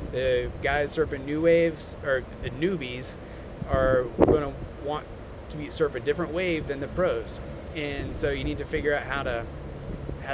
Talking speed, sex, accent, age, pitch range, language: 180 wpm, male, American, 30-49, 125-155 Hz, English